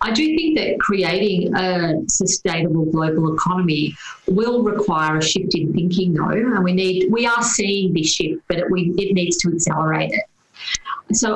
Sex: female